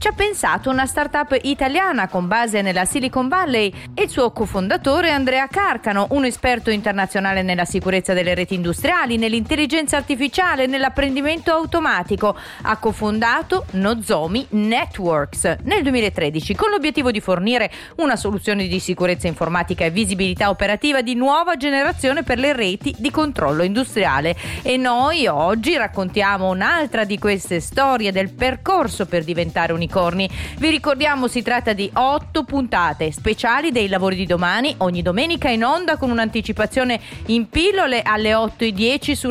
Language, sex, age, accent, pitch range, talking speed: Italian, female, 30-49, native, 200-285 Hz, 140 wpm